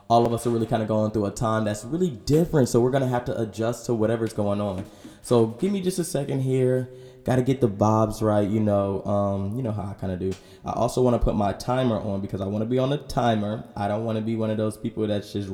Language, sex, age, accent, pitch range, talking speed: English, male, 20-39, American, 105-130 Hz, 290 wpm